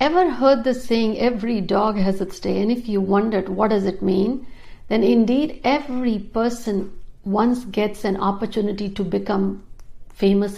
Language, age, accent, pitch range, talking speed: Hindi, 60-79, native, 200-245 Hz, 160 wpm